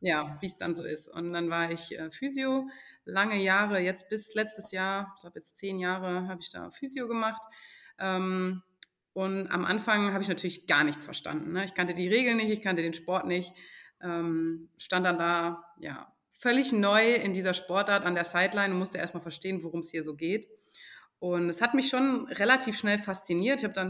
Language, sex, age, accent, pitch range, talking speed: German, female, 30-49, German, 170-230 Hz, 195 wpm